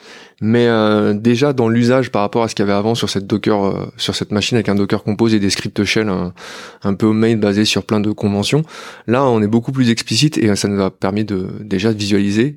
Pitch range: 105-120 Hz